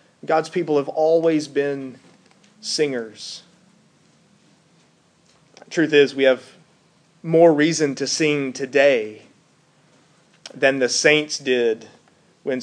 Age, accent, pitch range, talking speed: 30-49, American, 150-215 Hz, 95 wpm